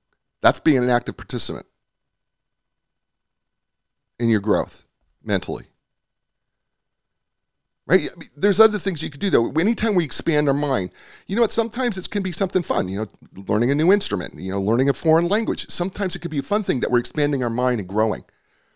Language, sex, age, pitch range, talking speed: English, male, 40-59, 95-140 Hz, 180 wpm